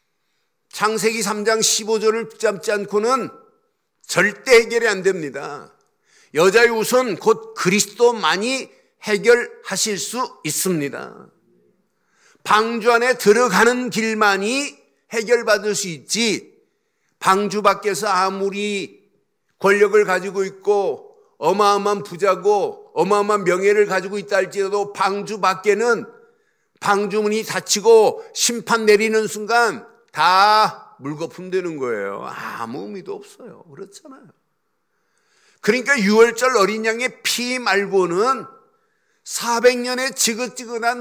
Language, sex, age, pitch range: Korean, male, 50-69, 205-260 Hz